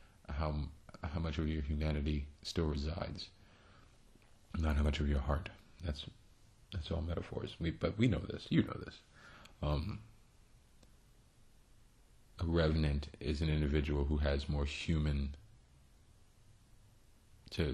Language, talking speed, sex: English, 125 wpm, male